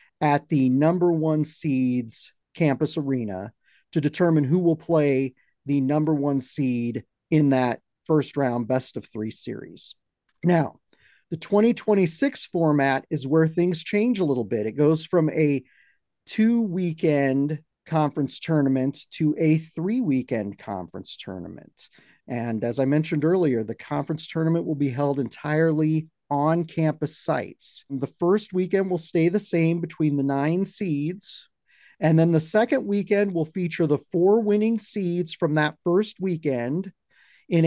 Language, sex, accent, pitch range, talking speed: English, male, American, 145-185 Hz, 145 wpm